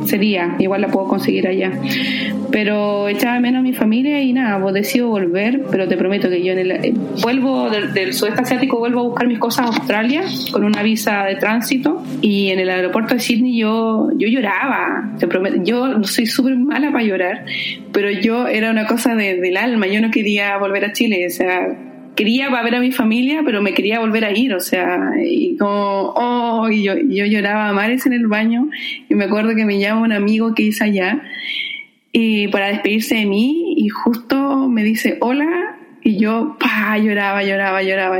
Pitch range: 200-250 Hz